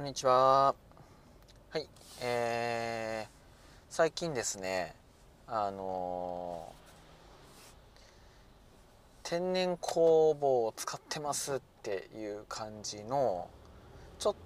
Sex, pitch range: male, 100-150 Hz